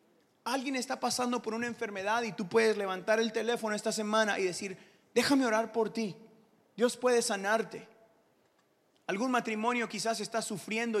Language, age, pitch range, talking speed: Spanish, 30-49, 195-230 Hz, 155 wpm